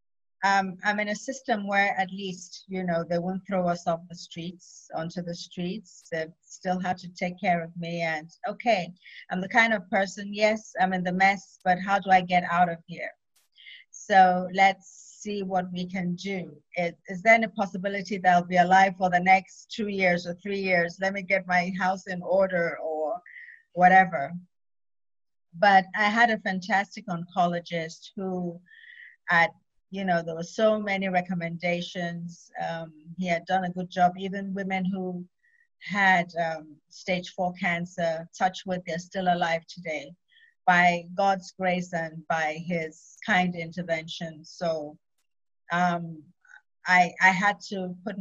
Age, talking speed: 30-49, 165 wpm